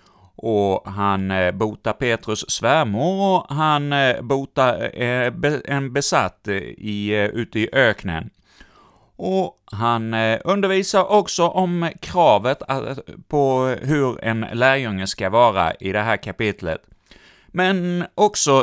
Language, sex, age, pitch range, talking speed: Swedish, male, 30-49, 100-150 Hz, 105 wpm